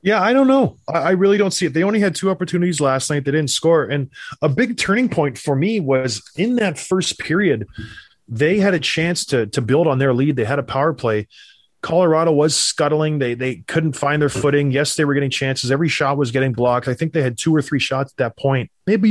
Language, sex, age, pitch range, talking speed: English, male, 20-39, 130-170 Hz, 240 wpm